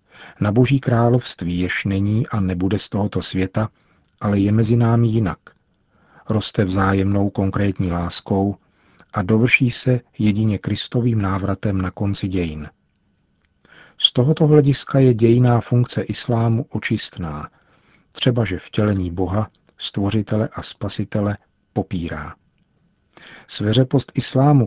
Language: Czech